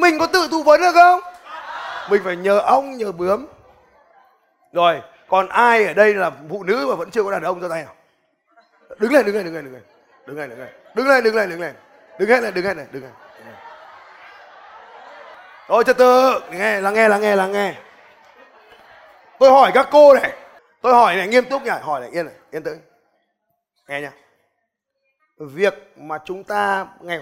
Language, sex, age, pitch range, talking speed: Vietnamese, male, 20-39, 185-265 Hz, 200 wpm